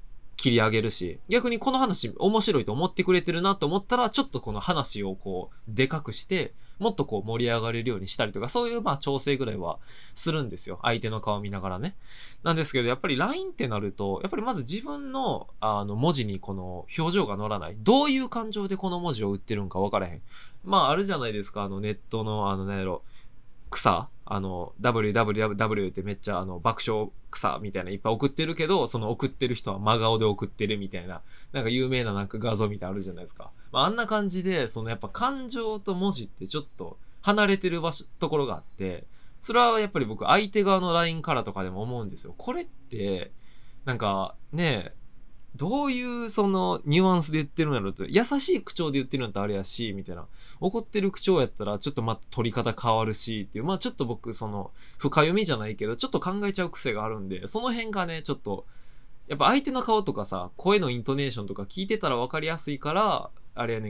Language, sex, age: Japanese, male, 20-39